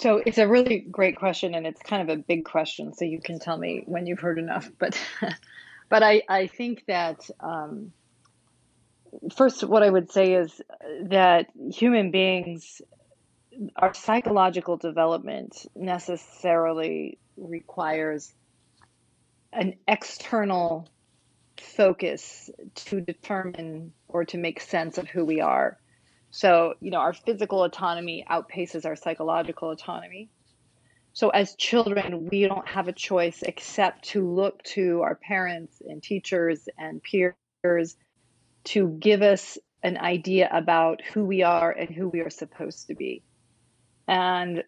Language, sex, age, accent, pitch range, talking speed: English, female, 30-49, American, 165-195 Hz, 135 wpm